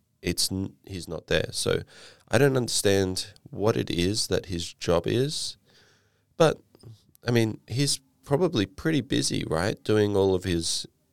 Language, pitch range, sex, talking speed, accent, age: English, 90-120 Hz, male, 145 wpm, Australian, 20-39